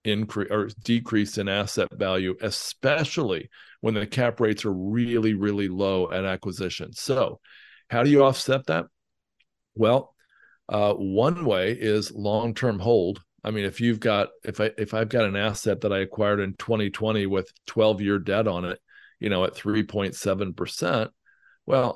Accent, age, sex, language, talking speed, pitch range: American, 50-69, male, English, 160 wpm, 100-110 Hz